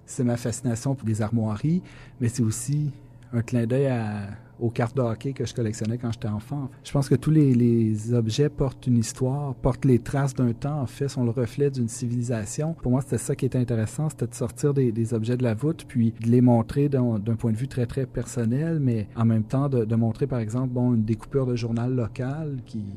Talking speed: 235 wpm